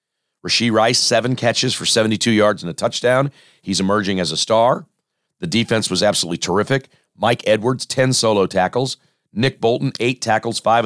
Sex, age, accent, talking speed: male, 50-69, American, 165 wpm